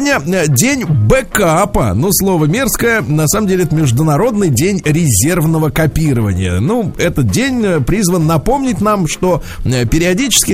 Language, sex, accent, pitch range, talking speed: Russian, male, native, 135-195 Hz, 120 wpm